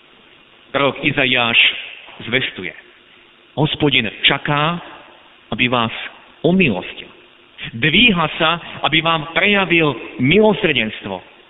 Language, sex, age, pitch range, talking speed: Slovak, male, 50-69, 130-180 Hz, 75 wpm